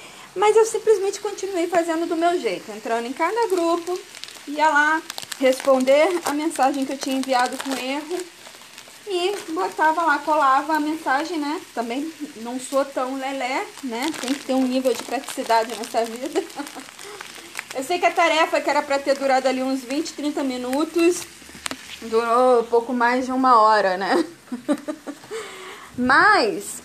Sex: female